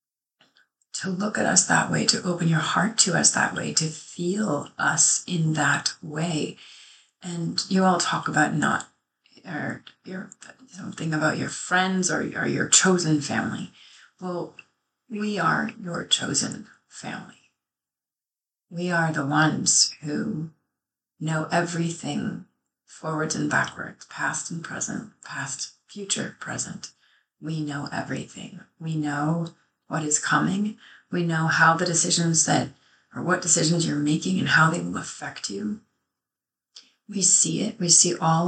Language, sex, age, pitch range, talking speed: English, female, 30-49, 155-185 Hz, 140 wpm